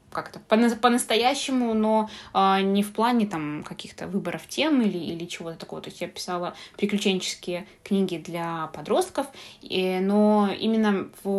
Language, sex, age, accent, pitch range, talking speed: Russian, female, 20-39, native, 180-215 Hz, 140 wpm